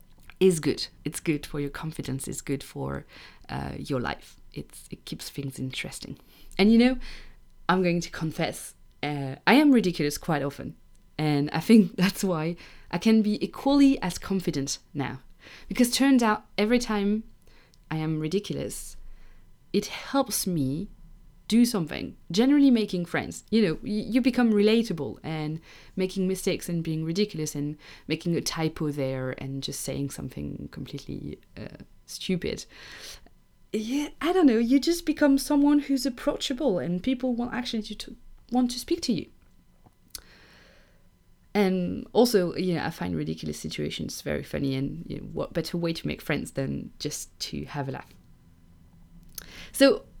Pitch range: 145-230 Hz